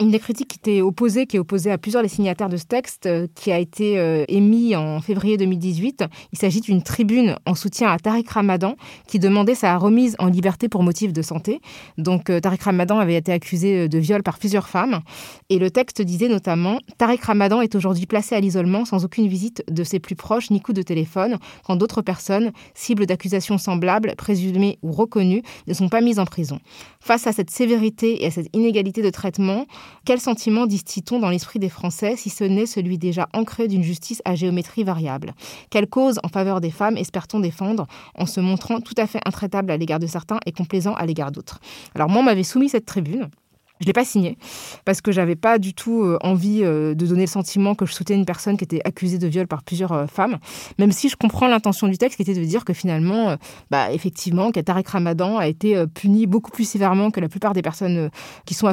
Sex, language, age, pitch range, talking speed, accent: female, French, 20-39, 180-215 Hz, 220 wpm, French